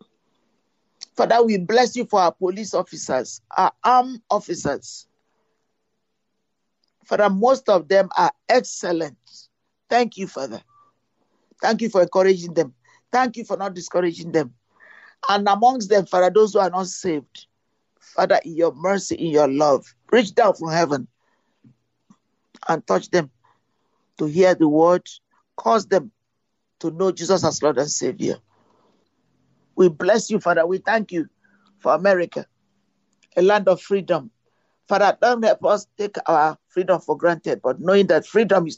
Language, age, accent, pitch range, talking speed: English, 50-69, Nigerian, 170-210 Hz, 145 wpm